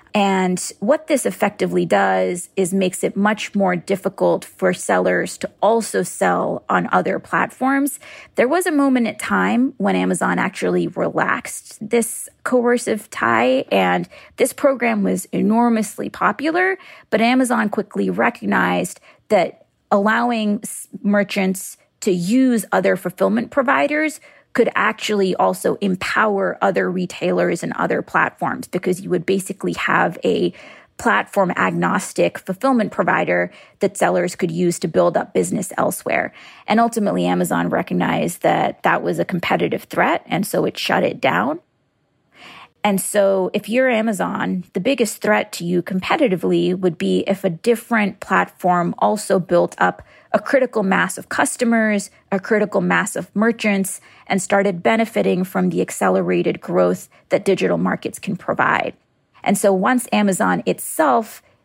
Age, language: 30-49, English